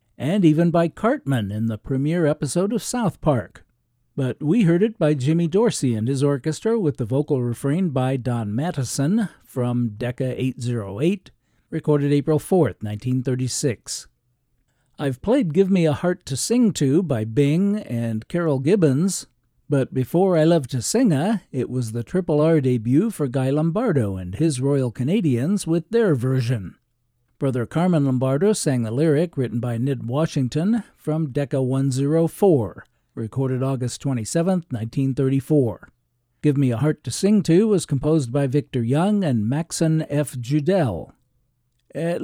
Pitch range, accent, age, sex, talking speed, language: 125-165 Hz, American, 60-79, male, 150 wpm, English